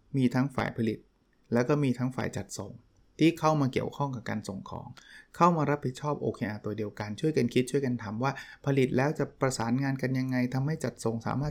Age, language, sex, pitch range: 20-39, Thai, male, 115-140 Hz